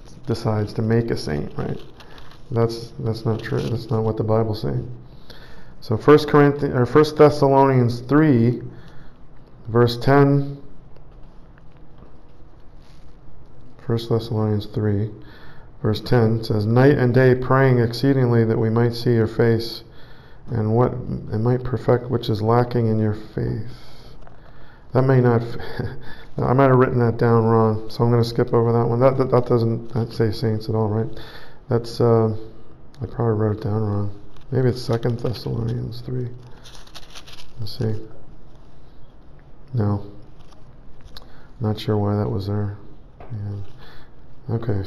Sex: male